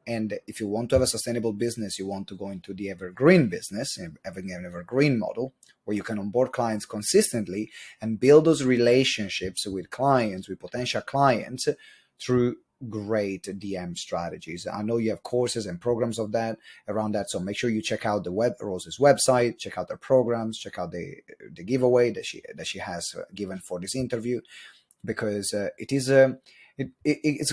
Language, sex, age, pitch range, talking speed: English, male, 30-49, 100-130 Hz, 185 wpm